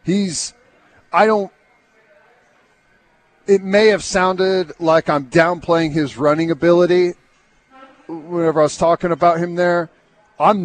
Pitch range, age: 150-185 Hz, 40-59